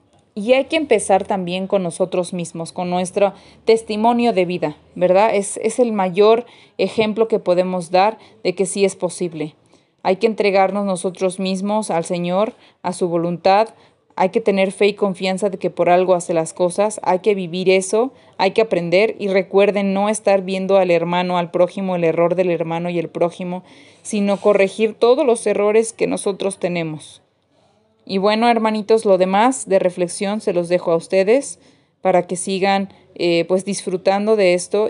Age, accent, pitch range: 30-49, Mexican, 180-205 Hz